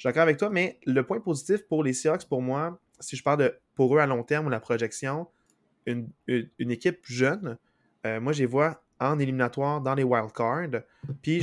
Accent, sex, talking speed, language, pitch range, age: Canadian, male, 215 wpm, French, 125-150 Hz, 20-39